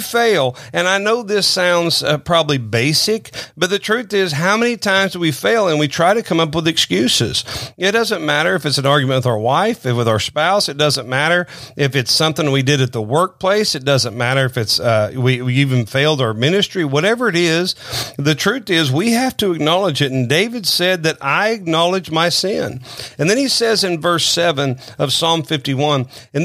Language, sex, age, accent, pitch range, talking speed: English, male, 40-59, American, 130-175 Hz, 215 wpm